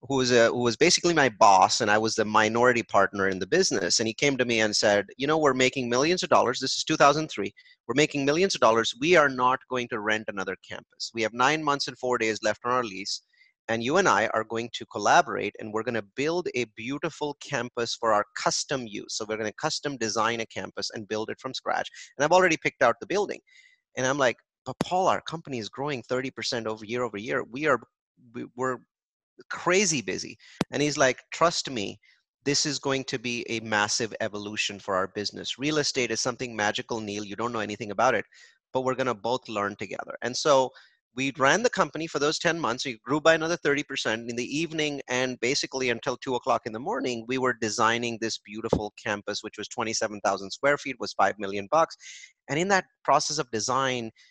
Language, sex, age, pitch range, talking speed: English, male, 30-49, 110-145 Hz, 215 wpm